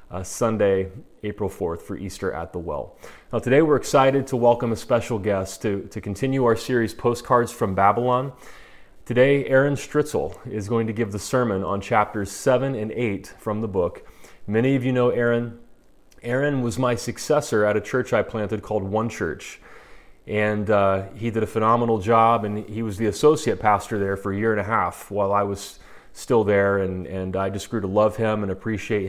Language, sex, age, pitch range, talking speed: English, male, 30-49, 100-120 Hz, 195 wpm